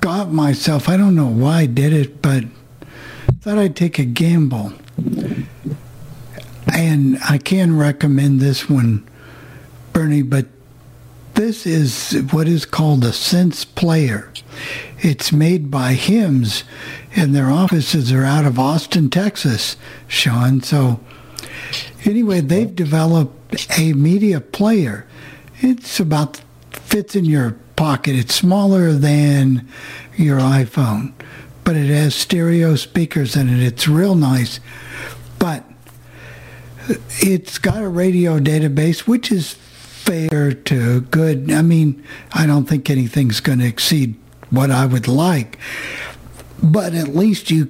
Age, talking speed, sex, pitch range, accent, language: 60-79, 125 wpm, male, 130-165 Hz, American, English